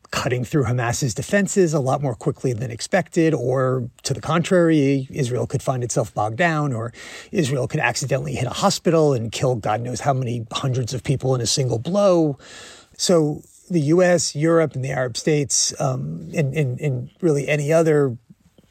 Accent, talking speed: American, 175 wpm